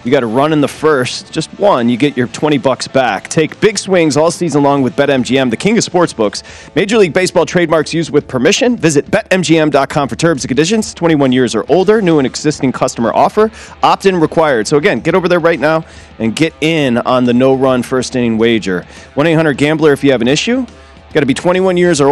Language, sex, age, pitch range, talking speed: English, male, 30-49, 130-175 Hz, 210 wpm